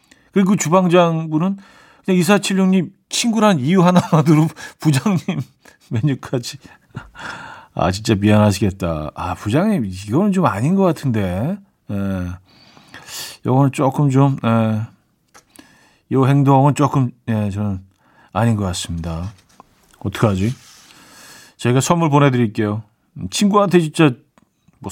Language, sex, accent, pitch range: Korean, male, native, 105-155 Hz